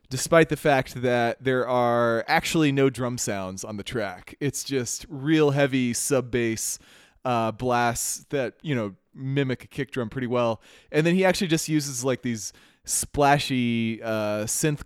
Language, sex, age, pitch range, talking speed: English, male, 30-49, 105-140 Hz, 165 wpm